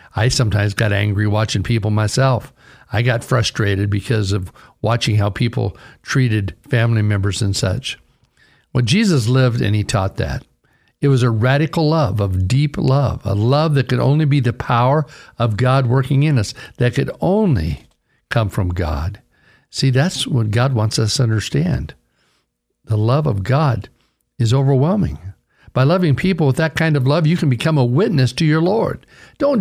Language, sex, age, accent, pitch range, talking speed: English, male, 60-79, American, 110-140 Hz, 170 wpm